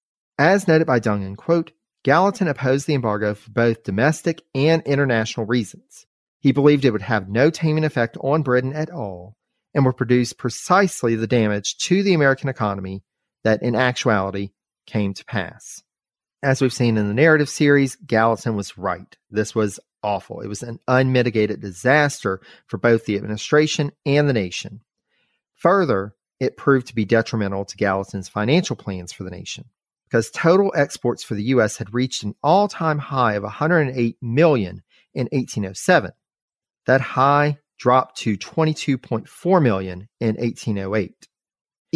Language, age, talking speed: English, 40-59, 150 wpm